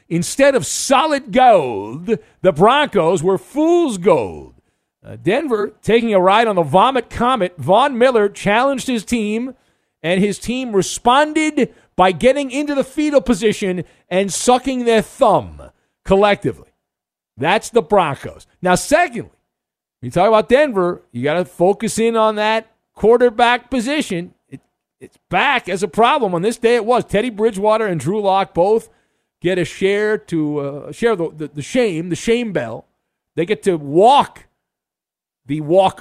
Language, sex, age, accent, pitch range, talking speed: English, male, 50-69, American, 150-225 Hz, 155 wpm